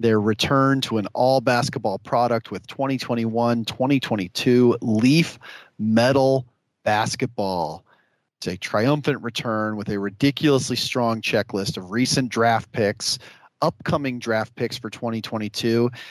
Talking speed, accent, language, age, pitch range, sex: 110 wpm, American, English, 40-59, 110-135 Hz, male